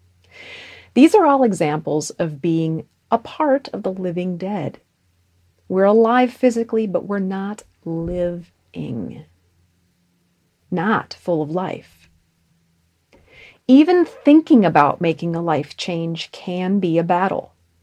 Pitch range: 135-210 Hz